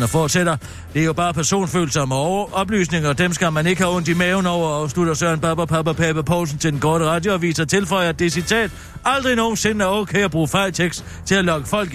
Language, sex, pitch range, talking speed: Danish, male, 140-200 Hz, 220 wpm